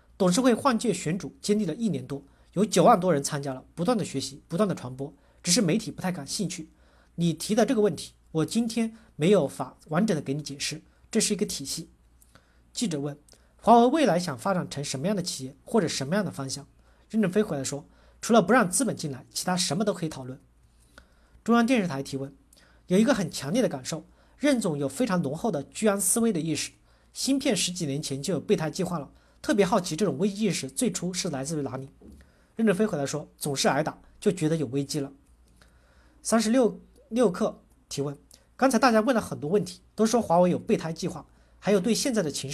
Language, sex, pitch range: Chinese, male, 140-215 Hz